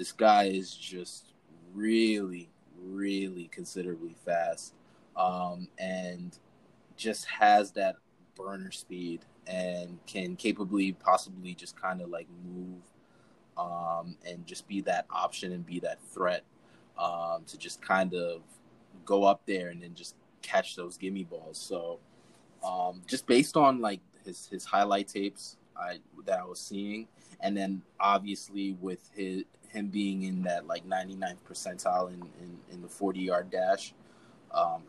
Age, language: 20-39, English